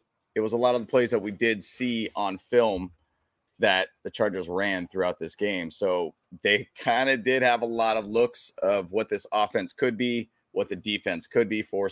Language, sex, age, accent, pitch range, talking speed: English, male, 30-49, American, 95-125 Hz, 210 wpm